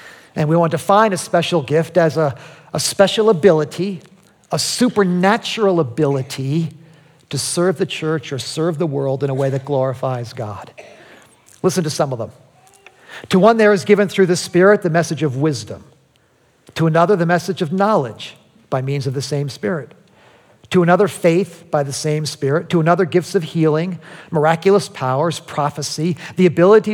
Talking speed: 170 wpm